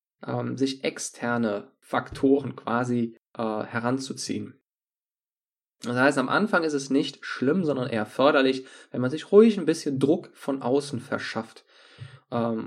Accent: German